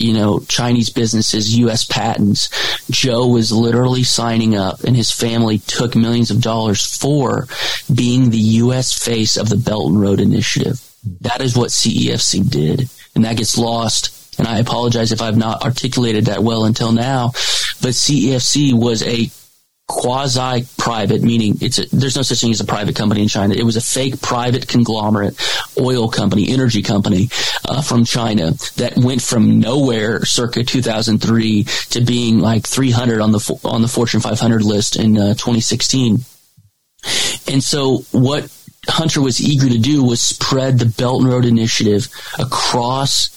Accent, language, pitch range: American, English, 110-125 Hz